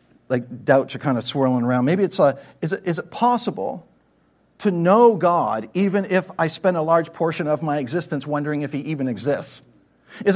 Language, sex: English, male